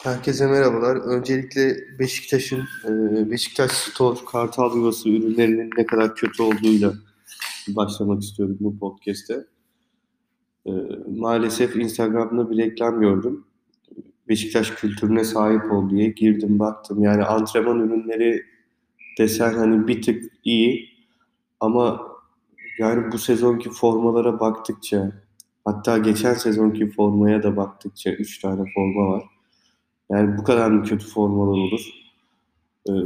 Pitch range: 110-125 Hz